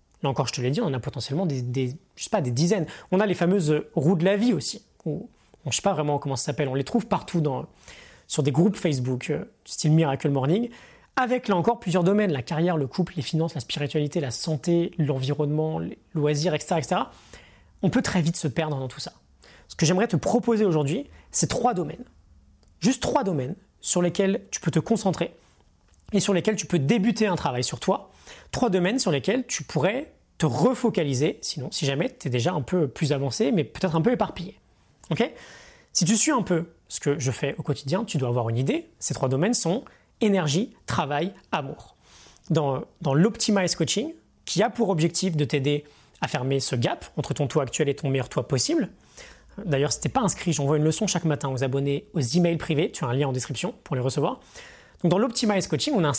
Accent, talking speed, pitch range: French, 220 wpm, 145-190 Hz